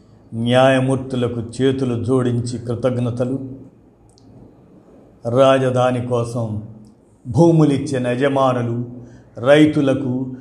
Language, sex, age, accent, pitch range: Telugu, male, 50-69, native, 125-145 Hz